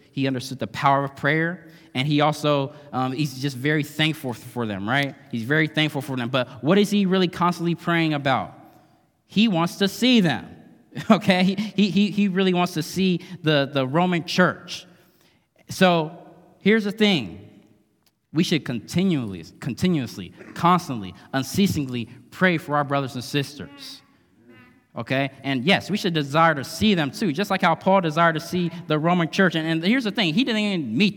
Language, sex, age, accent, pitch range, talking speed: English, male, 20-39, American, 135-180 Hz, 175 wpm